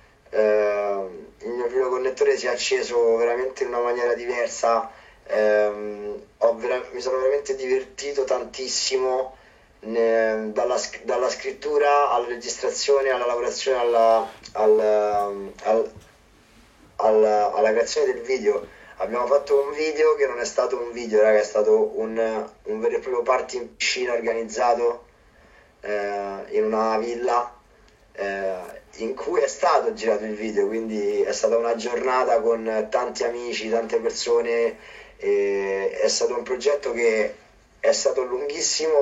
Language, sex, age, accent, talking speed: Italian, male, 20-39, native, 125 wpm